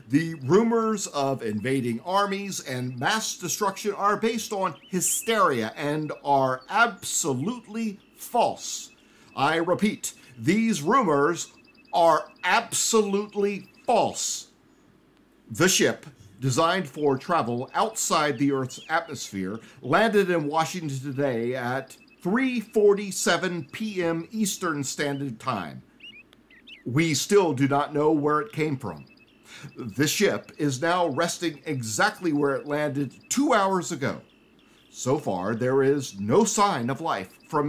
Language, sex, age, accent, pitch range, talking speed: English, male, 50-69, American, 140-195 Hz, 115 wpm